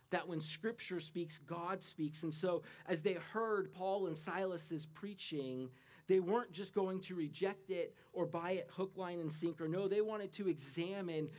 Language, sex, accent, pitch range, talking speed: English, male, American, 155-190 Hz, 180 wpm